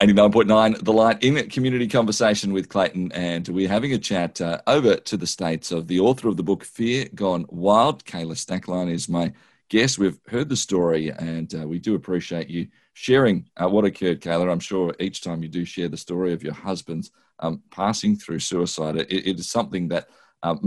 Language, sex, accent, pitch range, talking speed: English, male, Australian, 80-100 Hz, 195 wpm